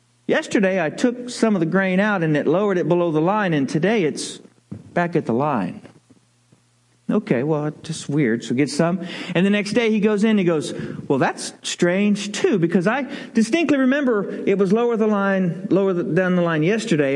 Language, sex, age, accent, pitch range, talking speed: English, male, 50-69, American, 170-225 Hz, 205 wpm